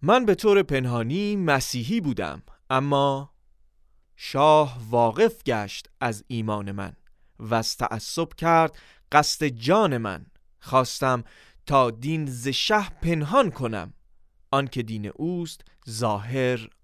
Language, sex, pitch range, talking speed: Persian, male, 110-155 Hz, 110 wpm